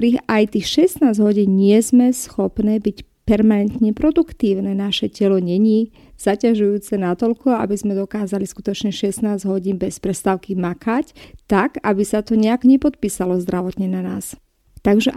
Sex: female